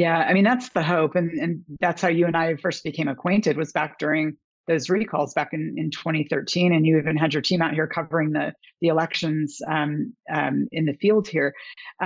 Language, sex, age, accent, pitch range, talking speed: English, female, 40-59, American, 150-185 Hz, 220 wpm